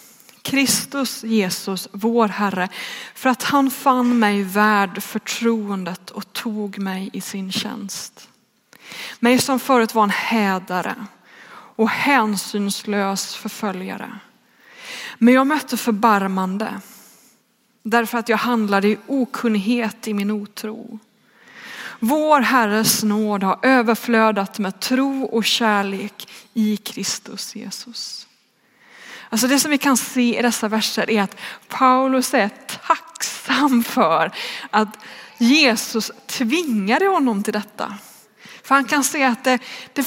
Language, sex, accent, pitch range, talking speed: Swedish, female, native, 215-260 Hz, 120 wpm